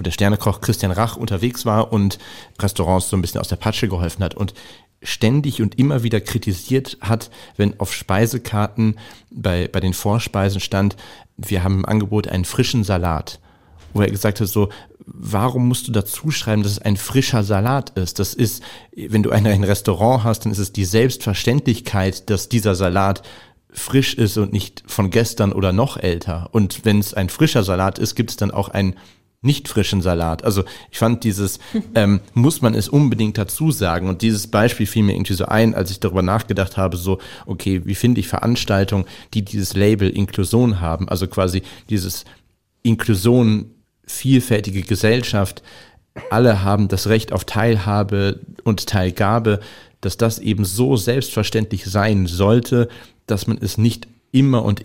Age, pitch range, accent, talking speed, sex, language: 40-59, 95-115 Hz, German, 170 wpm, male, German